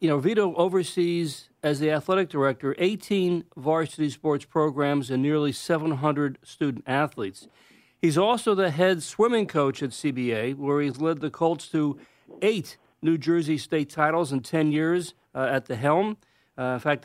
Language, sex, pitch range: English, male, 145-185 Hz